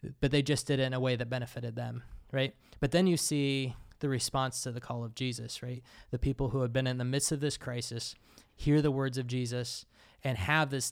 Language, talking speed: English, 235 wpm